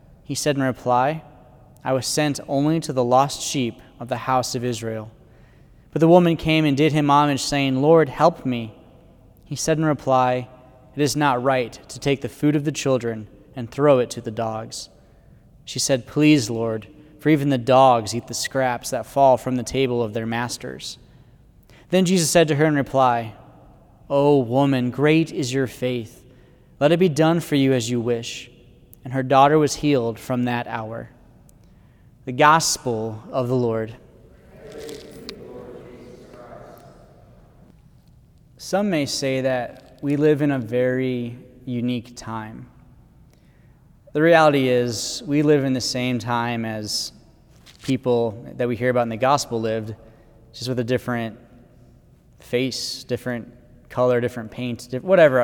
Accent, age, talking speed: American, 20-39, 155 wpm